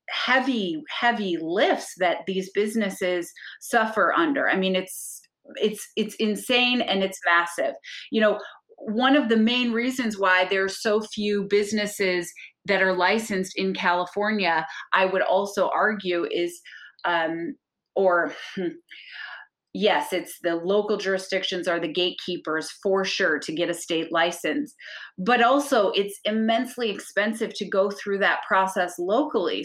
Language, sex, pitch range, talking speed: English, female, 190-245 Hz, 140 wpm